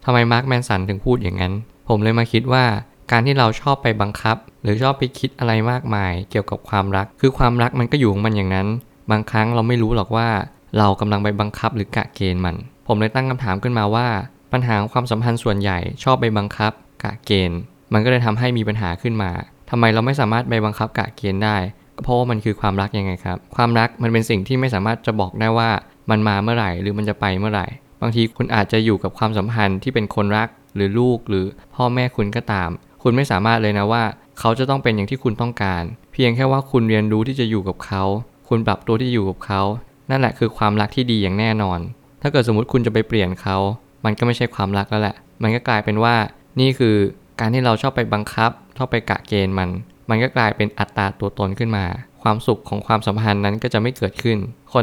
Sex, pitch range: male, 100-120 Hz